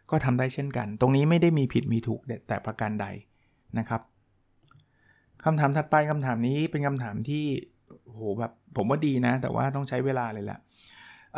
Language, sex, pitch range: Thai, male, 110-135 Hz